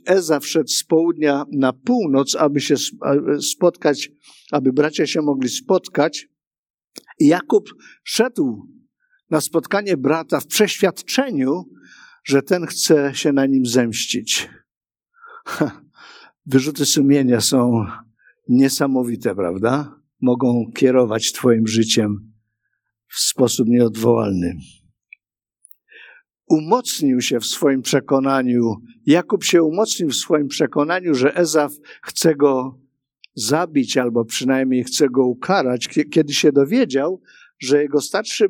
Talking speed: 105 wpm